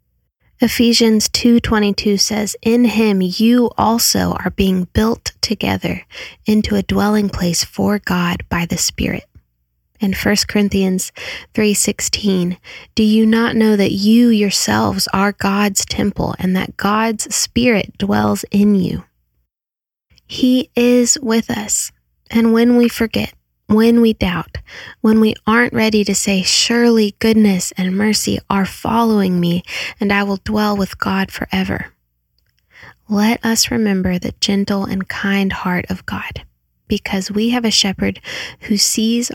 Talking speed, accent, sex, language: 135 wpm, American, female, English